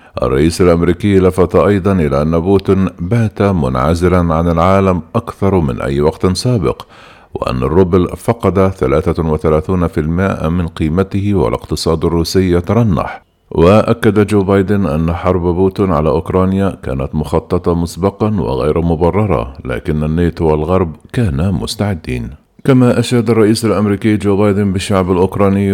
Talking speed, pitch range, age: 120 wpm, 80-100 Hz, 50-69